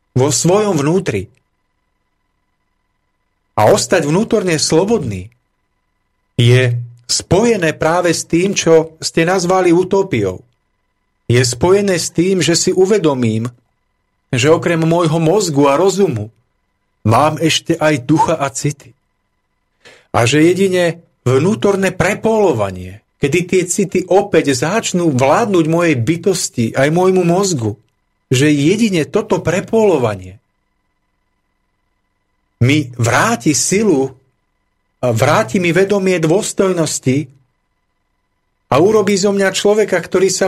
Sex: male